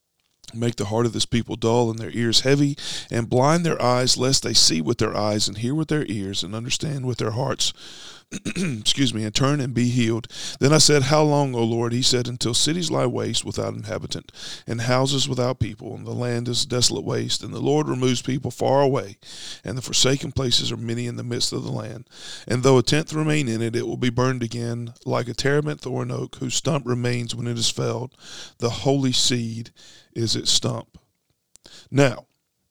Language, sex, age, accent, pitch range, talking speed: English, male, 40-59, American, 115-140 Hz, 210 wpm